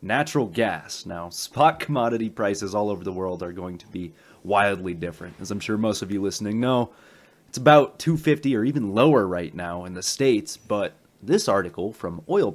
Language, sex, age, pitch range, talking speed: English, male, 30-49, 95-125 Hz, 190 wpm